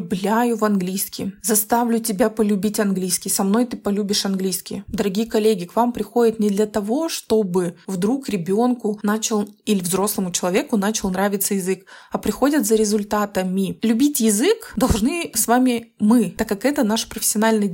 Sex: female